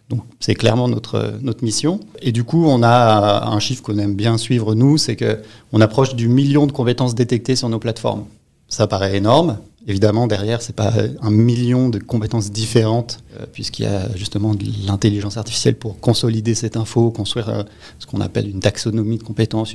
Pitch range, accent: 110-125 Hz, French